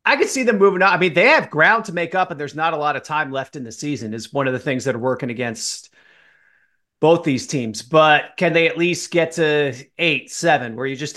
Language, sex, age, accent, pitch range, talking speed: English, male, 30-49, American, 135-160 Hz, 265 wpm